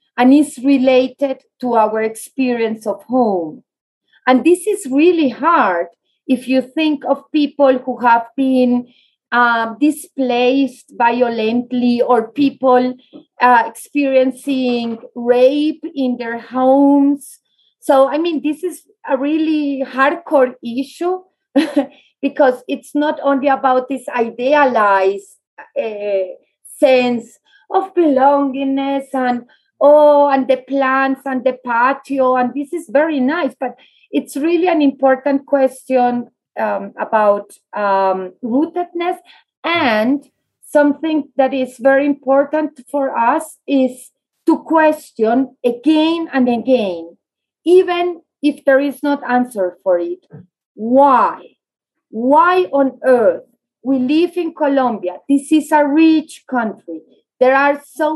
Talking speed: 115 wpm